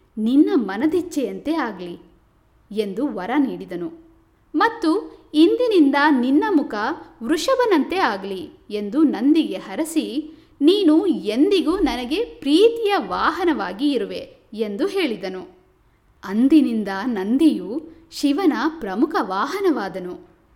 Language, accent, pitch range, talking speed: Kannada, native, 235-340 Hz, 80 wpm